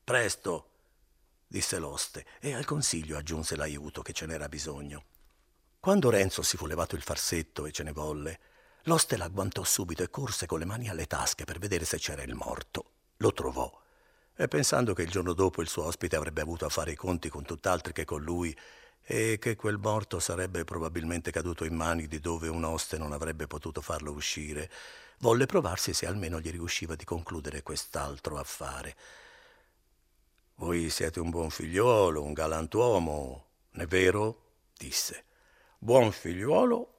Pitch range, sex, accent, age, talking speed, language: 80-95 Hz, male, native, 50-69, 165 wpm, Italian